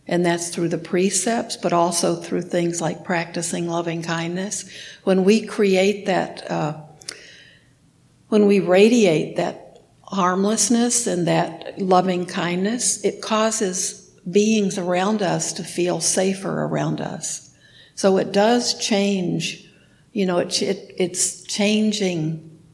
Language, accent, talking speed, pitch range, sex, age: English, American, 115 wpm, 170-195 Hz, female, 60-79